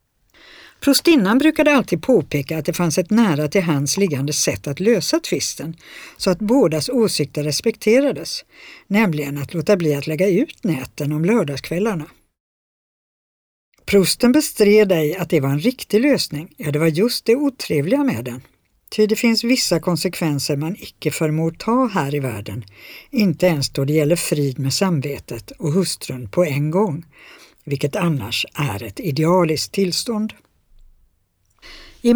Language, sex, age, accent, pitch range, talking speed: Swedish, female, 60-79, native, 150-205 Hz, 150 wpm